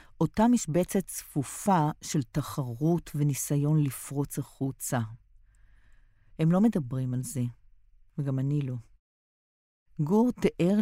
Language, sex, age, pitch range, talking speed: Hebrew, female, 50-69, 130-160 Hz, 100 wpm